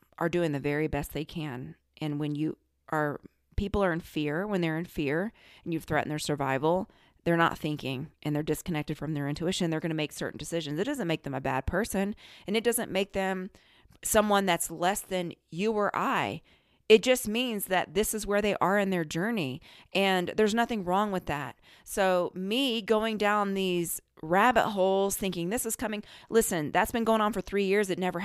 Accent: American